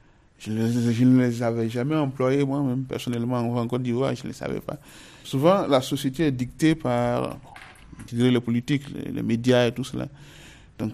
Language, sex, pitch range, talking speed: French, male, 125-150 Hz, 205 wpm